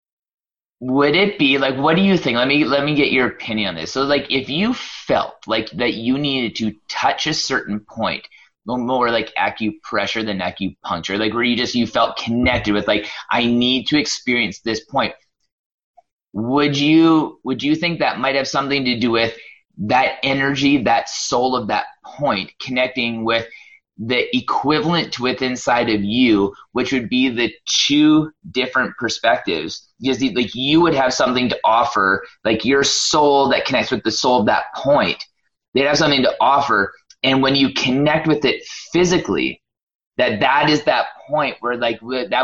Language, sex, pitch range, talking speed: English, male, 115-145 Hz, 180 wpm